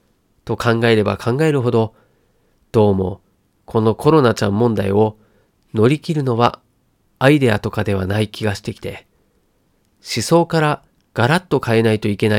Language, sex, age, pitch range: Japanese, male, 40-59, 105-155 Hz